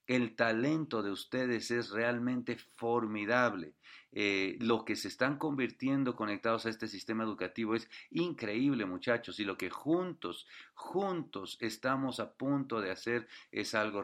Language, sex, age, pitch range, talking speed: English, male, 50-69, 105-120 Hz, 140 wpm